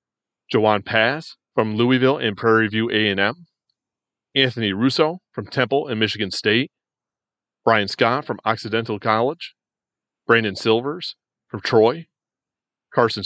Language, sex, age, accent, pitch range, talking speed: English, male, 30-49, American, 110-140 Hz, 115 wpm